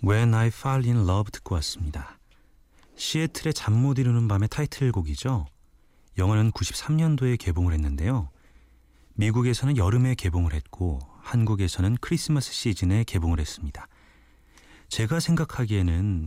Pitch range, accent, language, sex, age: 80-120 Hz, native, Korean, male, 30-49